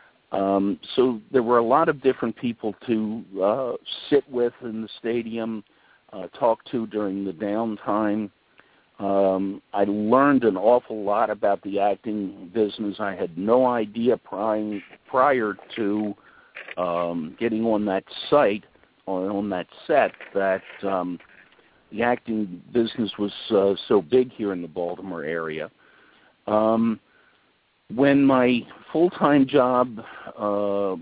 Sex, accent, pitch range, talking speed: male, American, 100-120 Hz, 130 wpm